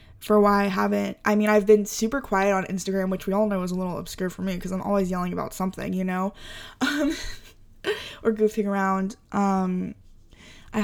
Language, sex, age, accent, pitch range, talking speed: English, female, 10-29, American, 190-210 Hz, 200 wpm